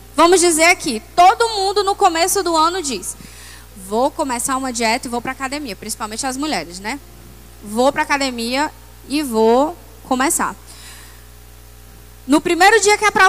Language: Portuguese